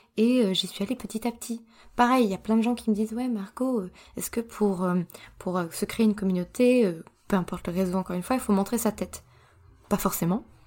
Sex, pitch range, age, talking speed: female, 180-220 Hz, 20-39, 230 wpm